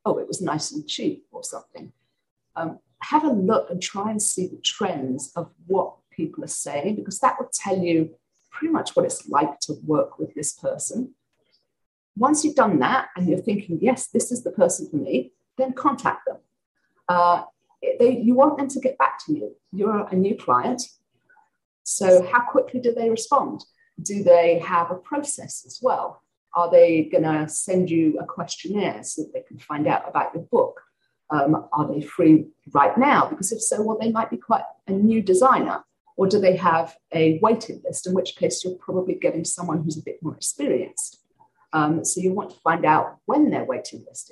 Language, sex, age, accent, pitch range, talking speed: English, female, 40-59, British, 170-270 Hz, 200 wpm